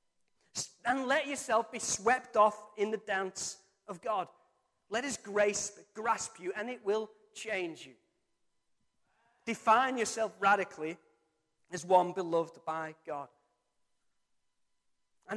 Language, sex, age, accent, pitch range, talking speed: English, male, 30-49, British, 175-220 Hz, 115 wpm